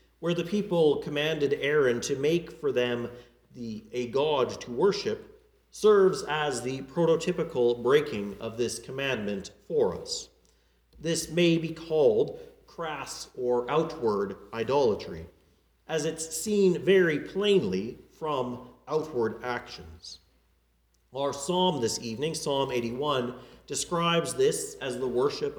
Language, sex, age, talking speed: English, male, 40-59, 120 wpm